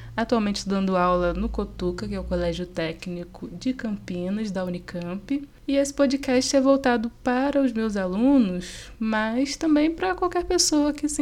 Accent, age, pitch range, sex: Brazilian, 20-39, 190-250 Hz, female